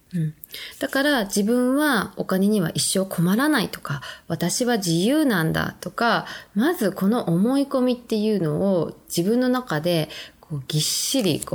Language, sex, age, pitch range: Japanese, female, 20-39, 165-240 Hz